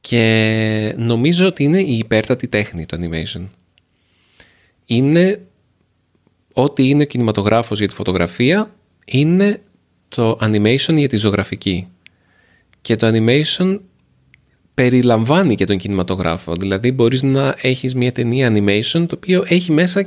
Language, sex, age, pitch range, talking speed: Greek, male, 30-49, 100-130 Hz, 125 wpm